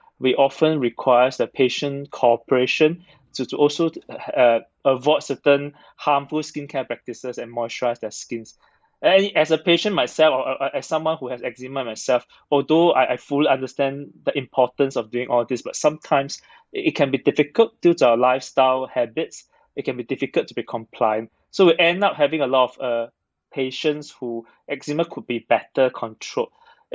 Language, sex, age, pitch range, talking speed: English, male, 20-39, 125-150 Hz, 170 wpm